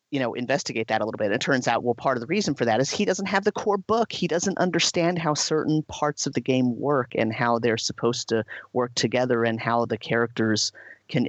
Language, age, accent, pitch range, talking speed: English, 30-49, American, 115-150 Hz, 250 wpm